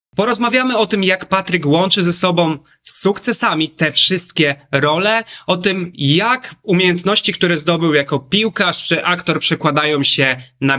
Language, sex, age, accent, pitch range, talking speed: Polish, male, 30-49, native, 170-205 Hz, 145 wpm